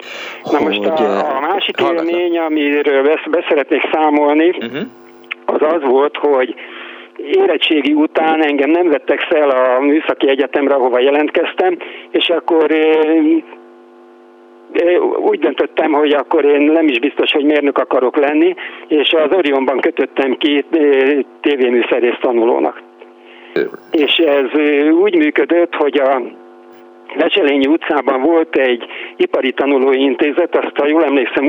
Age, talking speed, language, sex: 50-69, 120 wpm, Hungarian, male